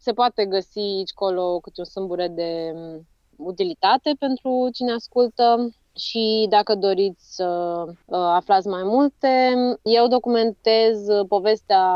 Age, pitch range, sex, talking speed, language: 20-39, 180-235 Hz, female, 115 wpm, Romanian